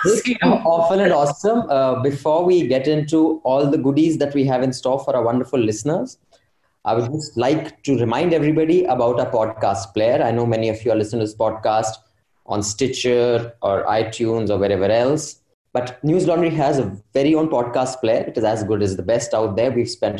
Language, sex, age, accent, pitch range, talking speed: English, male, 20-39, Indian, 110-145 Hz, 210 wpm